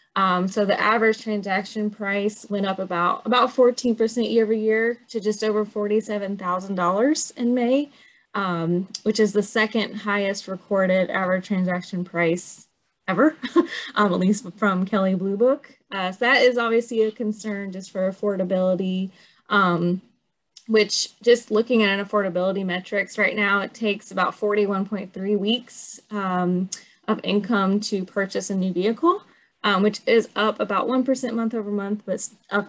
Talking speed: 150 wpm